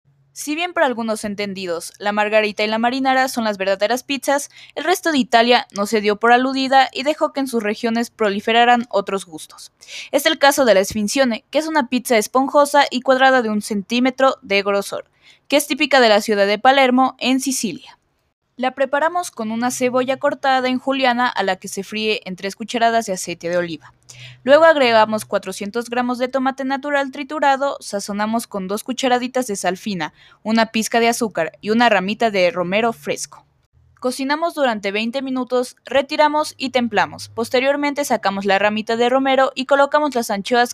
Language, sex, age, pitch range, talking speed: Spanish, female, 20-39, 210-275 Hz, 180 wpm